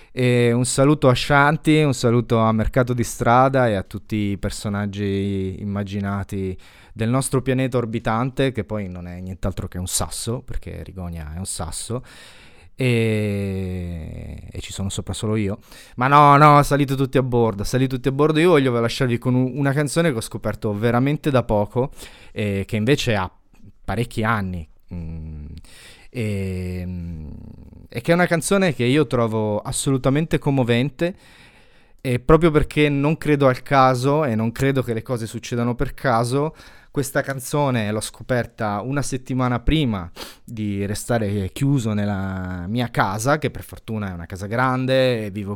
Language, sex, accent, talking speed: Italian, male, native, 160 wpm